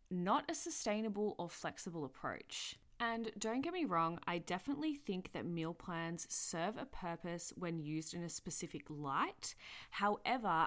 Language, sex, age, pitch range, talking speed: English, female, 20-39, 160-215 Hz, 150 wpm